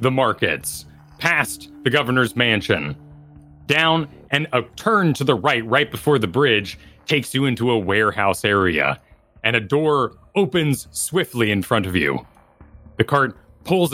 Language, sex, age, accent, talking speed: English, male, 30-49, American, 150 wpm